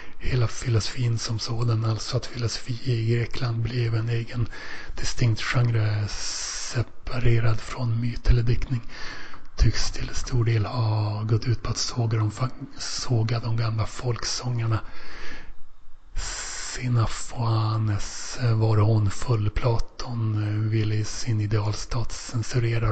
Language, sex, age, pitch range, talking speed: Swedish, male, 30-49, 110-120 Hz, 115 wpm